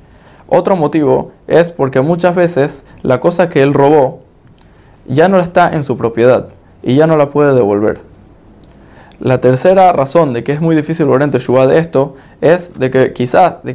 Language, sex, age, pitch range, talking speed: Spanish, male, 20-39, 125-160 Hz, 175 wpm